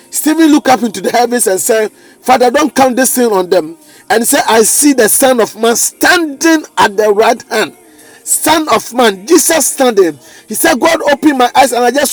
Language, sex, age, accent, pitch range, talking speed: English, male, 40-59, Nigerian, 230-295 Hz, 215 wpm